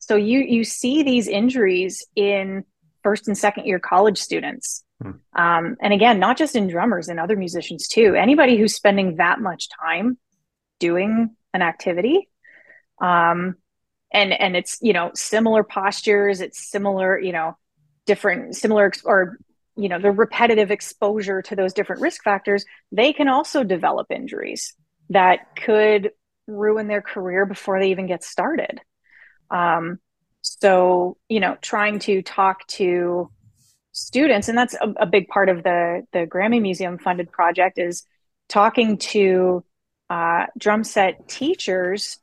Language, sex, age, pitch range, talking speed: English, female, 30-49, 185-220 Hz, 145 wpm